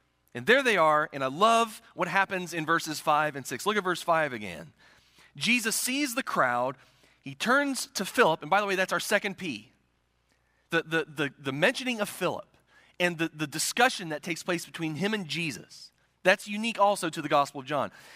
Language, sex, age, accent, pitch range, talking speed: English, male, 30-49, American, 130-190 Hz, 195 wpm